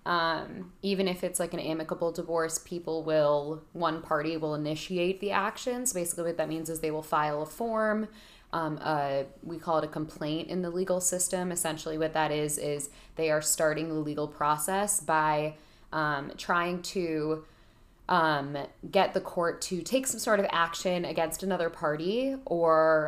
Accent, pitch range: American, 155-180 Hz